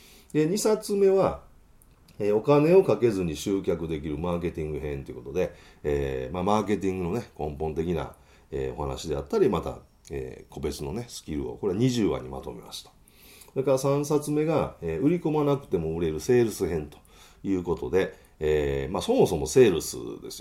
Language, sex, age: Japanese, male, 40-59